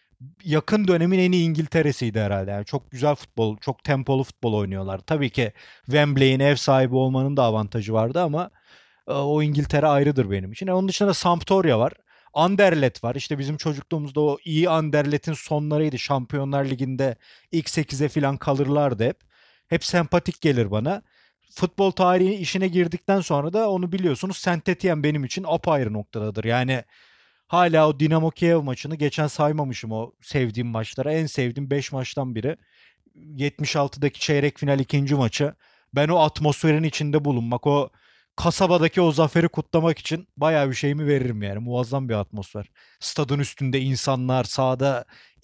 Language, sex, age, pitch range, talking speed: Turkish, male, 30-49, 130-160 Hz, 145 wpm